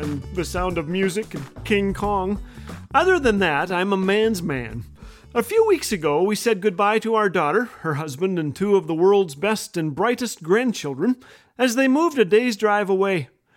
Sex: male